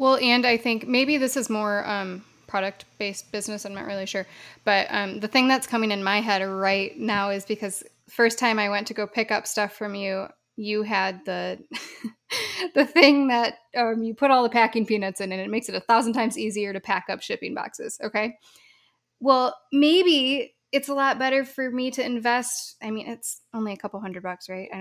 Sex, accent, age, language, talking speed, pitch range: female, American, 10-29, English, 210 wpm, 205-240 Hz